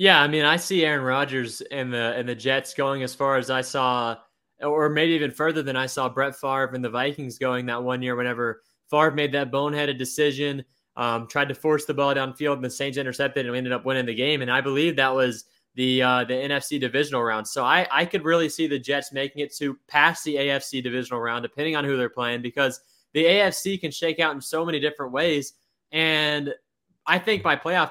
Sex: male